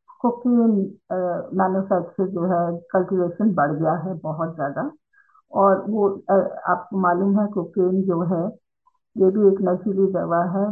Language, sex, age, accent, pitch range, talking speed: Hindi, female, 50-69, native, 185-230 Hz, 130 wpm